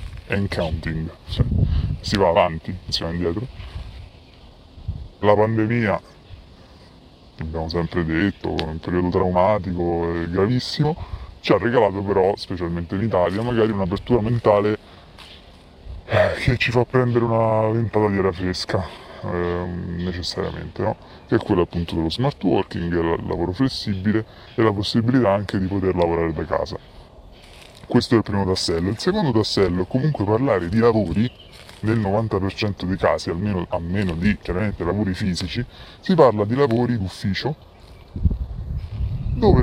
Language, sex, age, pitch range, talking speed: Italian, female, 20-39, 90-115 Hz, 135 wpm